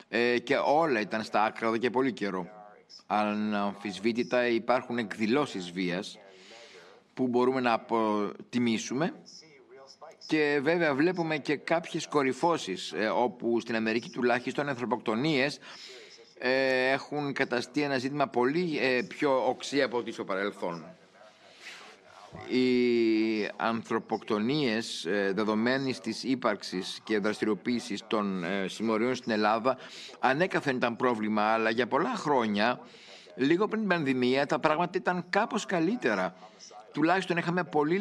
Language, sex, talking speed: Greek, male, 105 wpm